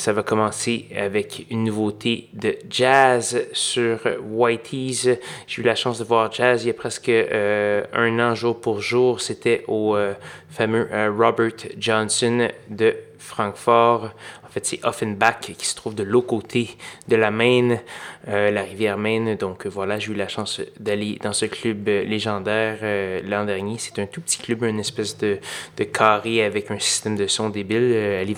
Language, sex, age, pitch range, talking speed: French, male, 20-39, 105-120 Hz, 185 wpm